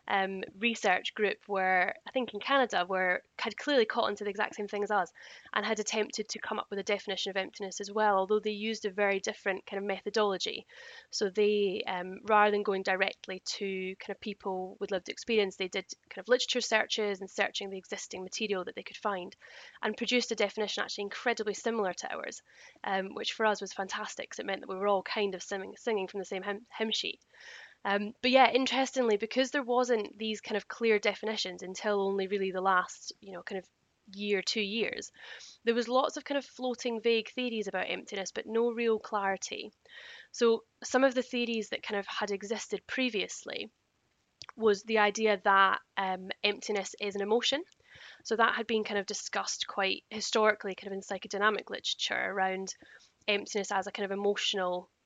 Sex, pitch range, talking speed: female, 195-225 Hz, 200 wpm